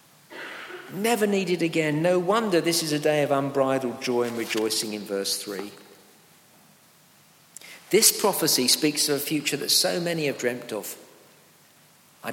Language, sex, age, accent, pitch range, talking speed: English, male, 50-69, British, 140-185 Hz, 145 wpm